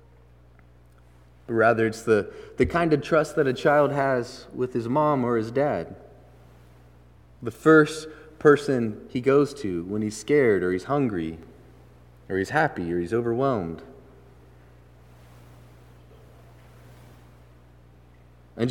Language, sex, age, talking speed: English, male, 30-49, 115 wpm